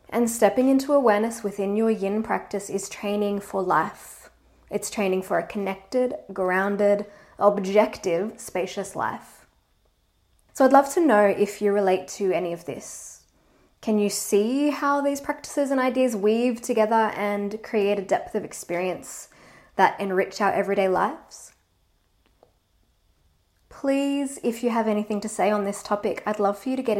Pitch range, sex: 200-250 Hz, female